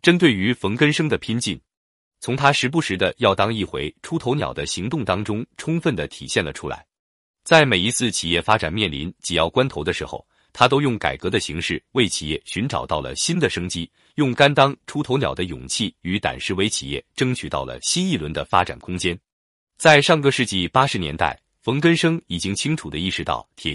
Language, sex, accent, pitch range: Chinese, male, native, 85-140 Hz